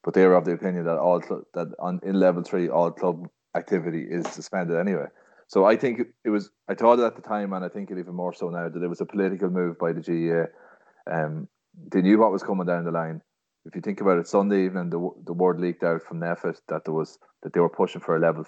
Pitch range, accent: 85-95 Hz, Irish